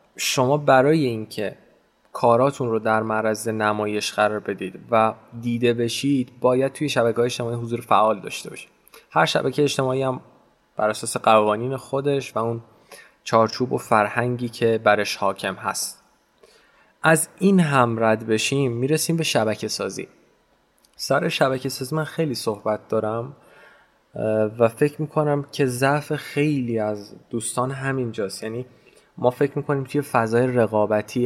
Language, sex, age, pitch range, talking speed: Persian, male, 20-39, 110-145 Hz, 135 wpm